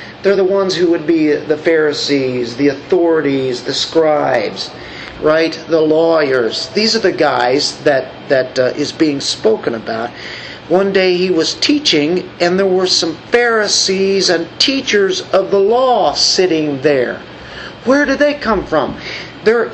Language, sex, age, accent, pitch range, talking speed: English, male, 50-69, American, 150-210 Hz, 150 wpm